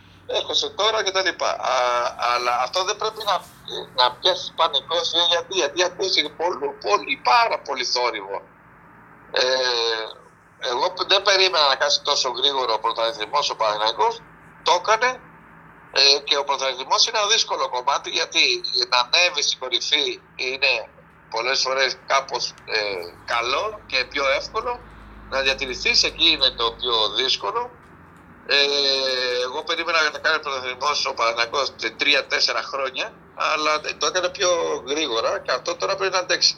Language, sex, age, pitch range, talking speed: Greek, male, 60-79, 130-200 Hz, 135 wpm